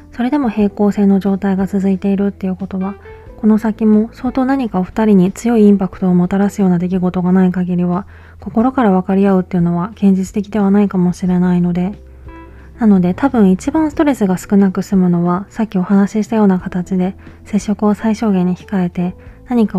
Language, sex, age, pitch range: Japanese, female, 20-39, 180-210 Hz